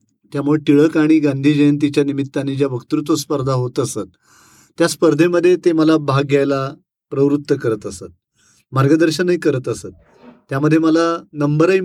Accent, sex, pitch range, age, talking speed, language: native, male, 135-160 Hz, 40-59, 130 wpm, Marathi